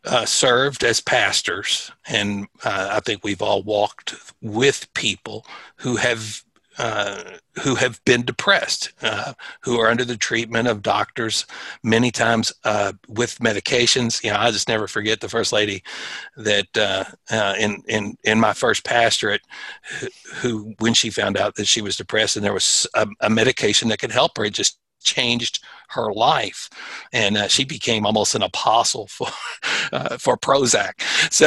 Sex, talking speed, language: male, 165 wpm, English